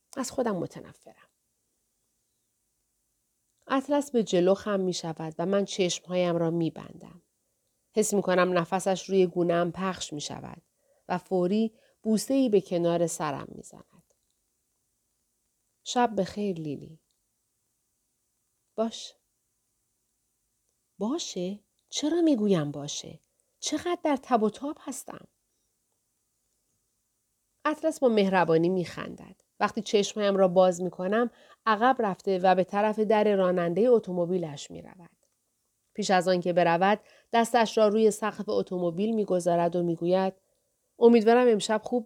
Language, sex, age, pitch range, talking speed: Persian, female, 40-59, 170-220 Hz, 115 wpm